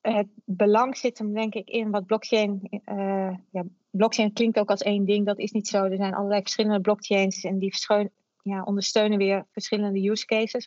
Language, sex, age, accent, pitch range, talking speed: Dutch, female, 30-49, Dutch, 190-215 Hz, 195 wpm